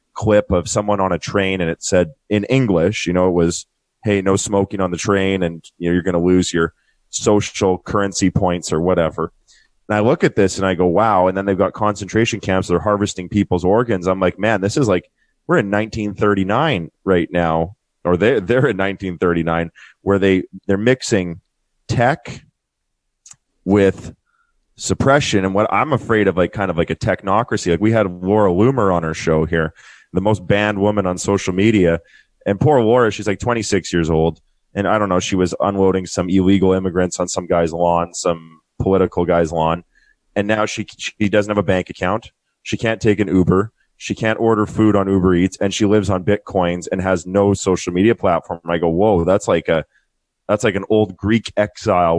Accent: American